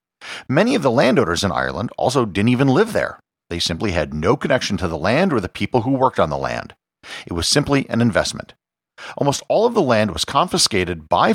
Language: English